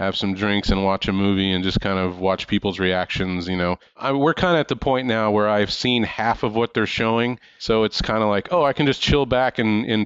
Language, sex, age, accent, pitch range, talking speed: English, male, 30-49, American, 100-115 Hz, 265 wpm